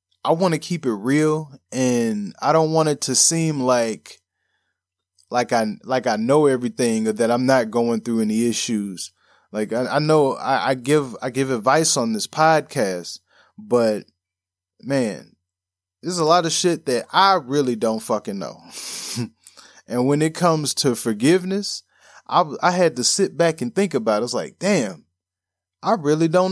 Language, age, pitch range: English, 20-39, 95-150 Hz